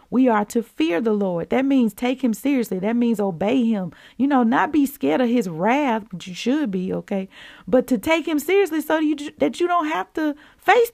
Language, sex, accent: English, female, American